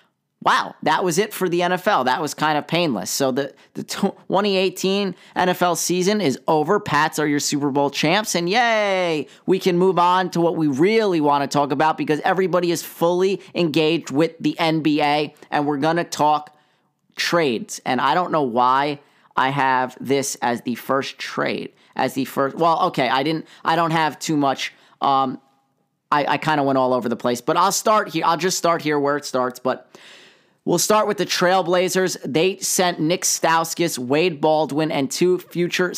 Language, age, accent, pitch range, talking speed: English, 30-49, American, 145-180 Hz, 190 wpm